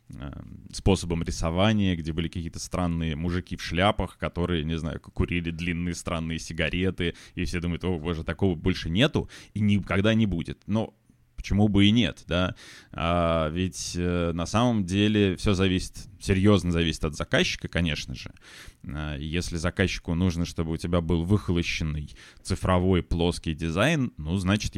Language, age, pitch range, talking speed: Russian, 20-39, 80-100 Hz, 145 wpm